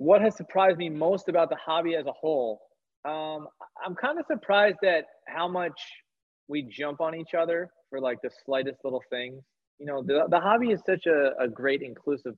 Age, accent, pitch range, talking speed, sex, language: 20-39, American, 135-170 Hz, 200 wpm, male, English